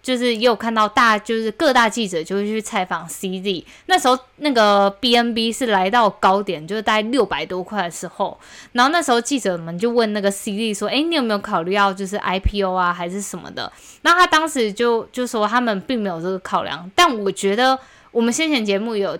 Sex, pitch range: female, 190-245 Hz